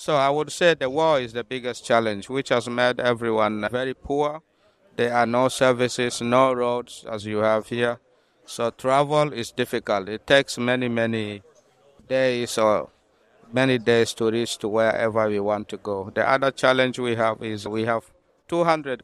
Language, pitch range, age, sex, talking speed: English, 110-130 Hz, 60-79, male, 175 wpm